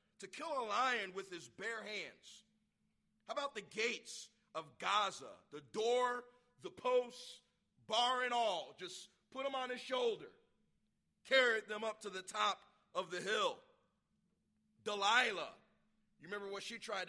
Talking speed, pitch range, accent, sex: 150 wpm, 195-250 Hz, American, male